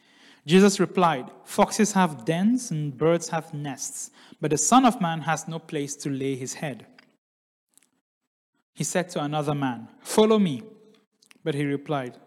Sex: male